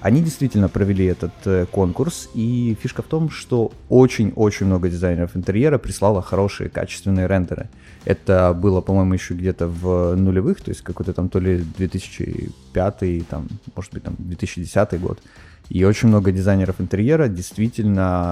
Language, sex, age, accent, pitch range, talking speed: Russian, male, 20-39, native, 95-115 Hz, 145 wpm